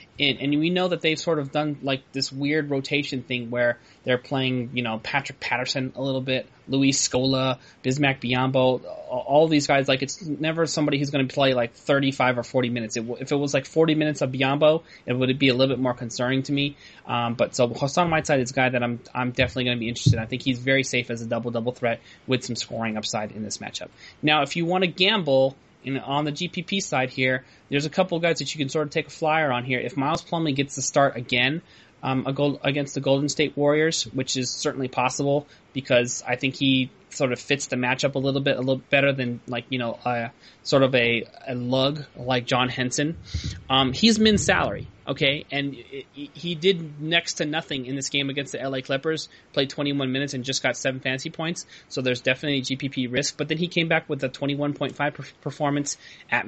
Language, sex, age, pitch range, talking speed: English, male, 20-39, 125-145 Hz, 230 wpm